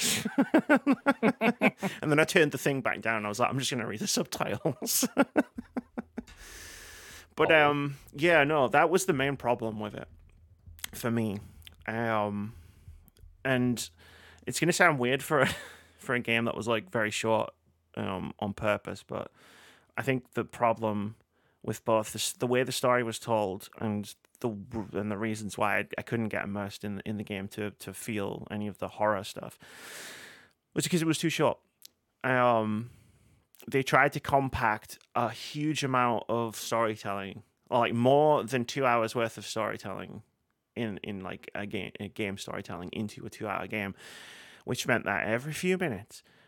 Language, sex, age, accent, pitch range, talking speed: English, male, 30-49, British, 105-135 Hz, 165 wpm